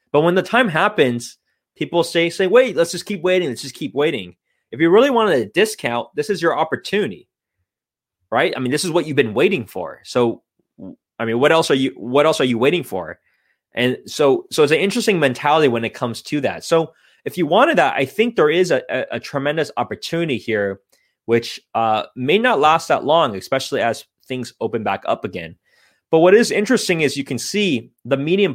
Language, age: English, 20-39